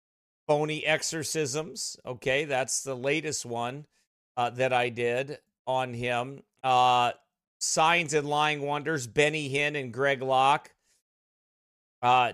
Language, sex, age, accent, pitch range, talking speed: English, male, 40-59, American, 125-155 Hz, 115 wpm